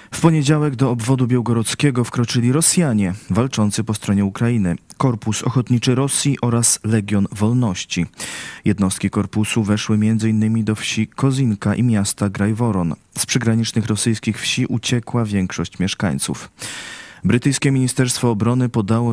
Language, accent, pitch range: Polish, native, 100-125 Hz